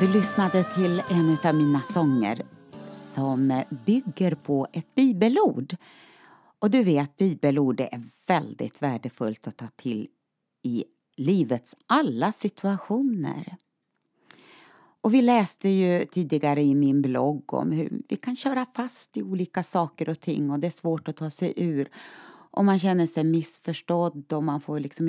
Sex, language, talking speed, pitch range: female, Swedish, 150 wpm, 140-190 Hz